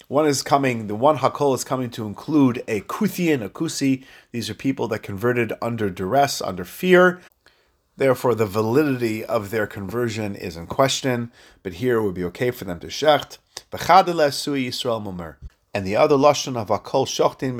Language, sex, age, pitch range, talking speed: English, male, 30-49, 115-145 Hz, 180 wpm